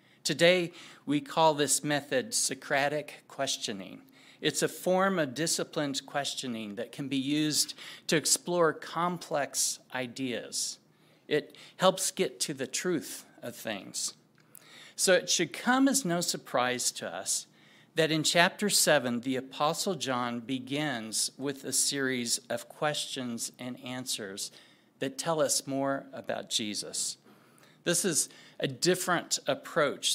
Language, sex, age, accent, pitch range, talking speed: English, male, 50-69, American, 130-165 Hz, 125 wpm